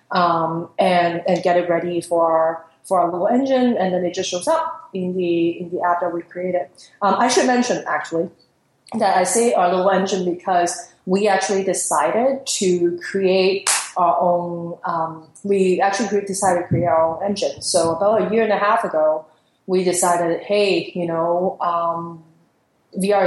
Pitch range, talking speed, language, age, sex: 170-200 Hz, 180 wpm, English, 30-49, female